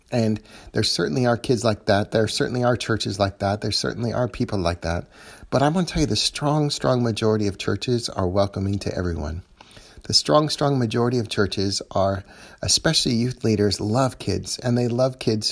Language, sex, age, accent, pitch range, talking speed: English, male, 30-49, American, 100-120 Hz, 195 wpm